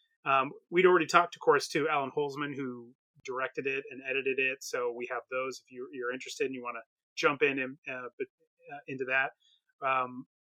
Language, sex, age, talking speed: English, male, 30-49, 190 wpm